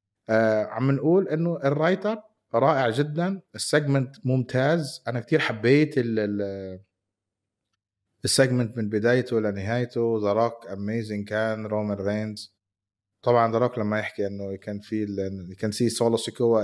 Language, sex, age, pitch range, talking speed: Arabic, male, 30-49, 105-135 Hz, 130 wpm